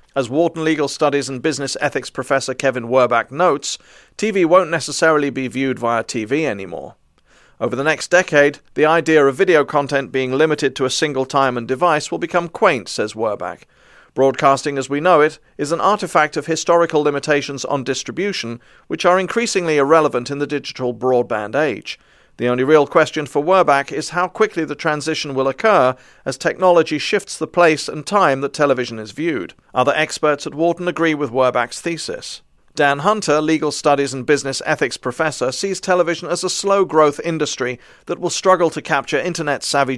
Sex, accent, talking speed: male, British, 175 wpm